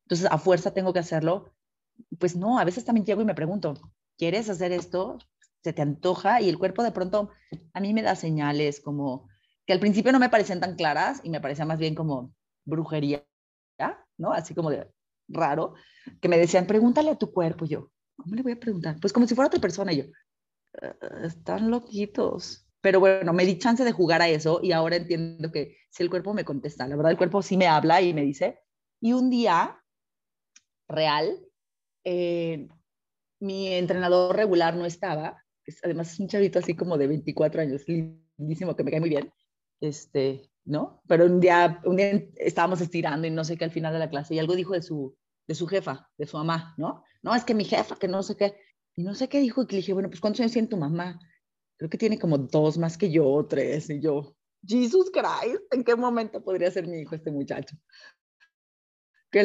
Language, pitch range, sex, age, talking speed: Spanish, 160-205 Hz, female, 30-49, 205 wpm